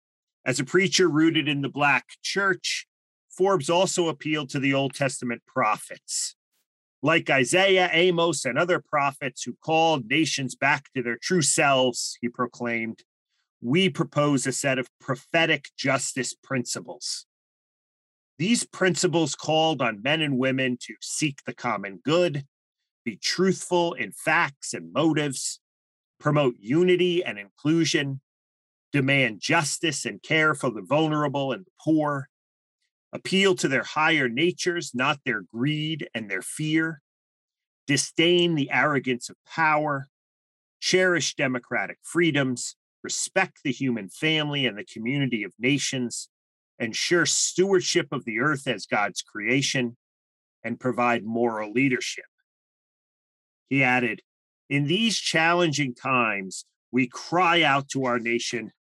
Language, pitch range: English, 125-165 Hz